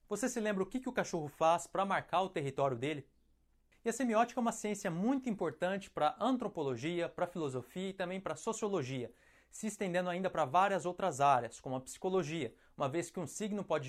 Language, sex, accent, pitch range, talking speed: Portuguese, male, Brazilian, 150-195 Hz, 205 wpm